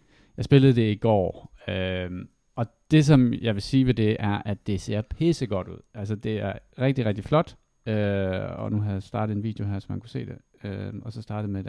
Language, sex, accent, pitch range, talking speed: Danish, male, native, 100-125 Hz, 240 wpm